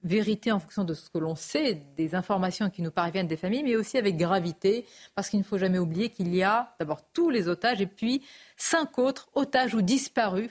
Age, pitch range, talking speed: 40-59, 180-230 Hz, 225 wpm